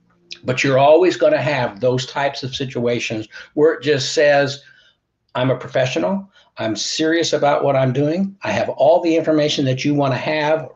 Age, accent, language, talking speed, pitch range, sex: 60-79, American, English, 185 wpm, 125-165 Hz, male